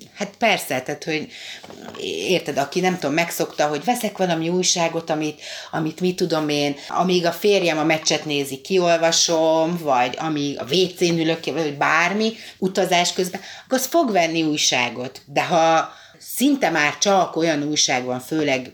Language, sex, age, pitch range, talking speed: Hungarian, female, 30-49, 145-185 Hz, 150 wpm